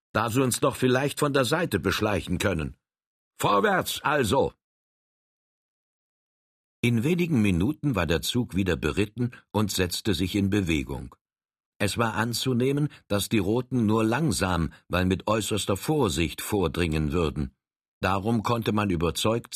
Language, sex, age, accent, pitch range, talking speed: German, male, 60-79, German, 90-120 Hz, 130 wpm